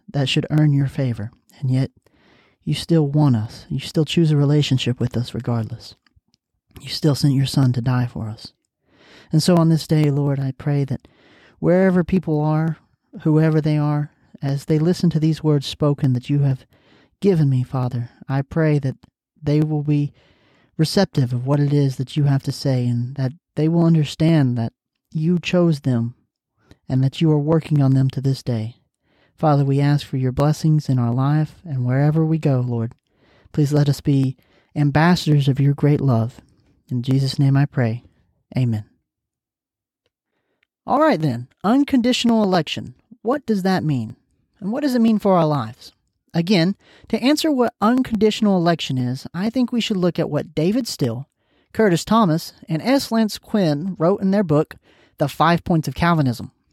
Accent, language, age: American, English, 40-59